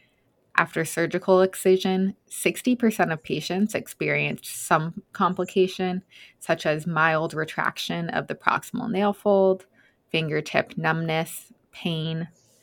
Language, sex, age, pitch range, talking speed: English, female, 20-39, 155-185 Hz, 100 wpm